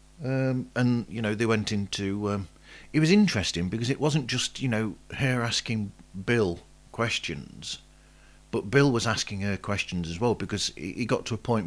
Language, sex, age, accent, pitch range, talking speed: English, male, 40-59, British, 80-110 Hz, 180 wpm